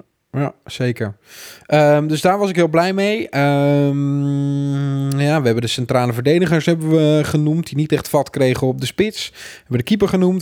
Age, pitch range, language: 20-39, 130-170 Hz, Dutch